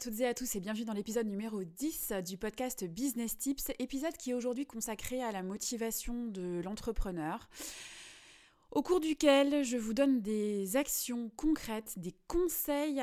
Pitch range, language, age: 195-255 Hz, French, 20-39